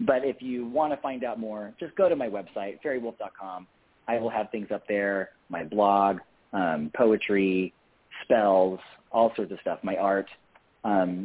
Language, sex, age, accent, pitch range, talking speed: English, male, 40-59, American, 100-135 Hz, 170 wpm